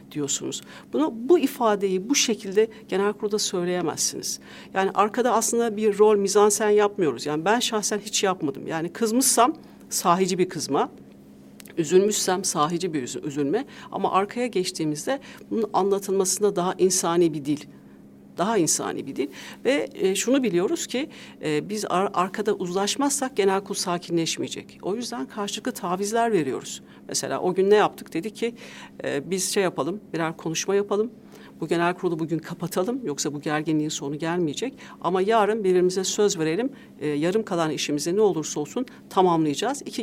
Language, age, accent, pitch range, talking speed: Turkish, 60-79, native, 160-215 Hz, 150 wpm